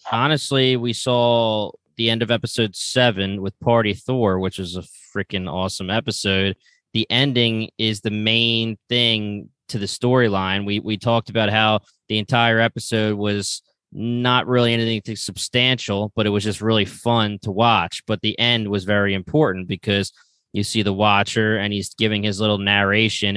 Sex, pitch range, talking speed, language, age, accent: male, 100-120 Hz, 165 wpm, English, 20-39, American